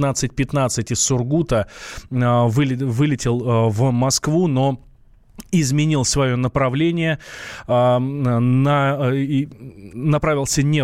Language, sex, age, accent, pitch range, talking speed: Russian, male, 20-39, native, 125-150 Hz, 80 wpm